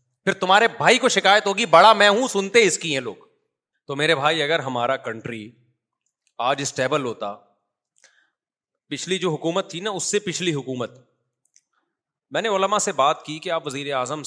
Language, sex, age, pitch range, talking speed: Urdu, male, 30-49, 135-180 Hz, 170 wpm